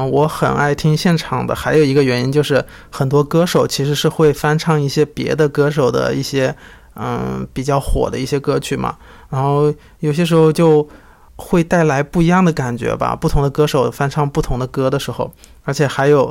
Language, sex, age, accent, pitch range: Chinese, male, 20-39, native, 135-155 Hz